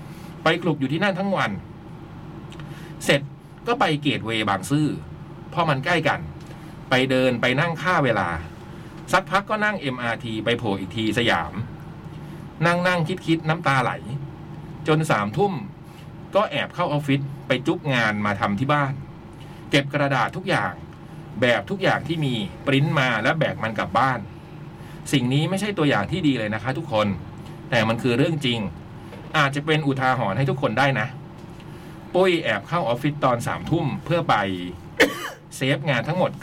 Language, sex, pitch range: Thai, male, 130-165 Hz